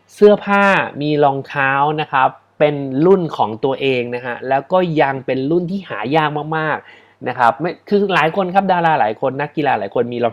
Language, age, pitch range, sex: Thai, 20-39, 125-170 Hz, male